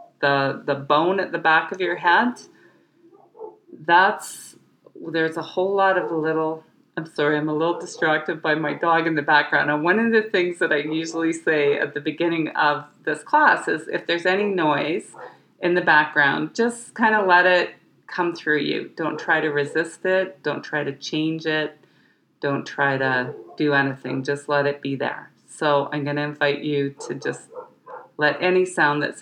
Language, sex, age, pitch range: English, female, 40-59, 145-185 Hz